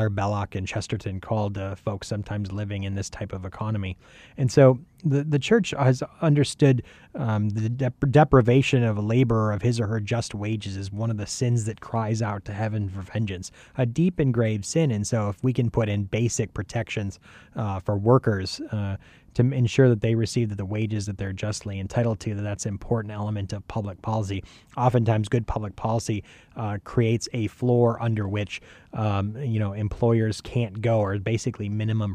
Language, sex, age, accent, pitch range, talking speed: English, male, 30-49, American, 105-120 Hz, 190 wpm